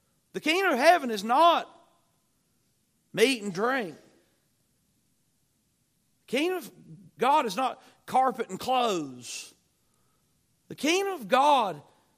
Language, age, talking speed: English, 40-59, 110 wpm